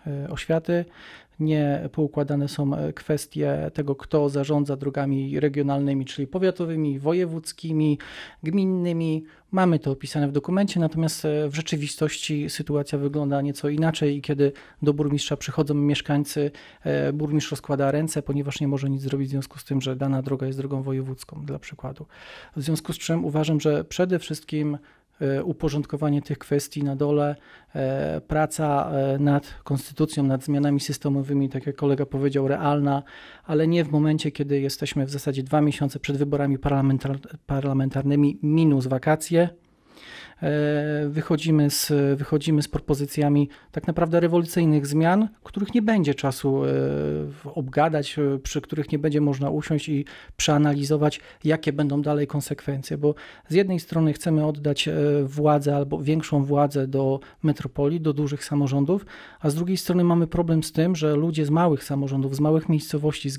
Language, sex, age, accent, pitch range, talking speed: Polish, male, 40-59, native, 140-155 Hz, 140 wpm